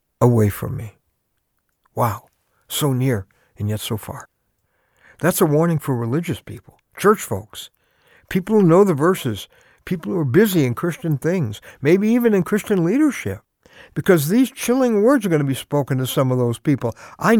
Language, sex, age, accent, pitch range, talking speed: English, male, 60-79, American, 130-195 Hz, 170 wpm